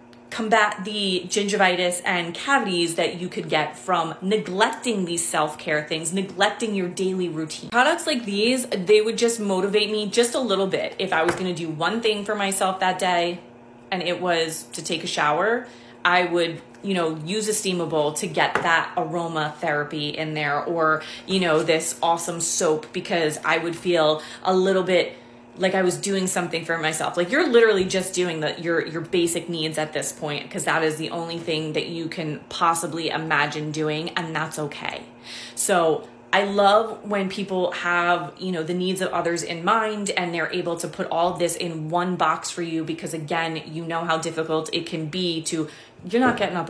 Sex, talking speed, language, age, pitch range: female, 195 wpm, English, 30-49, 160-190 Hz